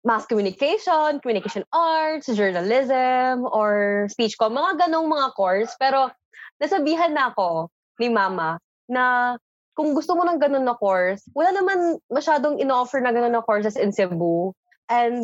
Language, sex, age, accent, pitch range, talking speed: Filipino, female, 20-39, native, 195-275 Hz, 140 wpm